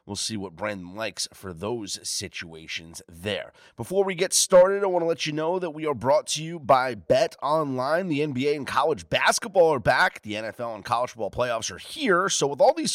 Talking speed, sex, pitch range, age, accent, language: 220 wpm, male, 125-180 Hz, 30-49, American, English